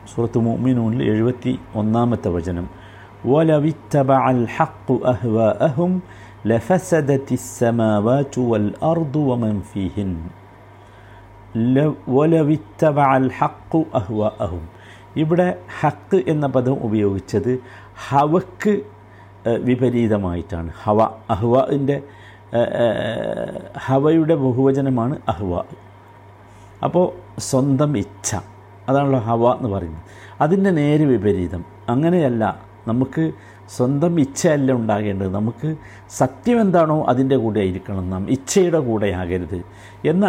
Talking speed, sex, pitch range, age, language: 90 wpm, male, 105-135 Hz, 50-69, Malayalam